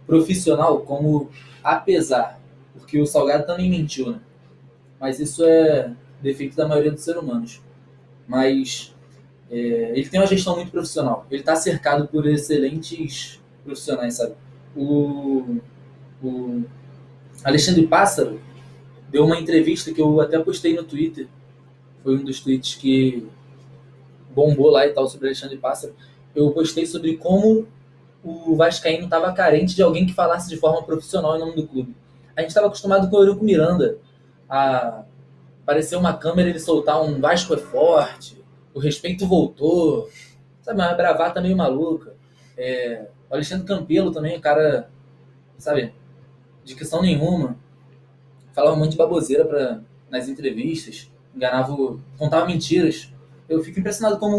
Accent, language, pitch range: Brazilian, Portuguese, 135-165 Hz